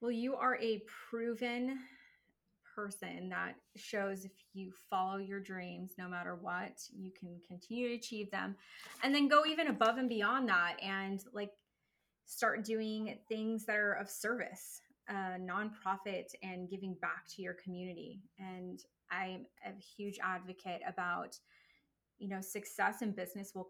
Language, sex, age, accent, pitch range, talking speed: English, female, 20-39, American, 185-225 Hz, 150 wpm